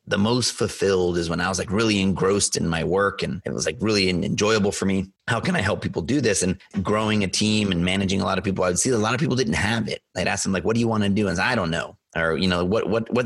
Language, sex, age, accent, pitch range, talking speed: English, male, 30-49, American, 85-100 Hz, 310 wpm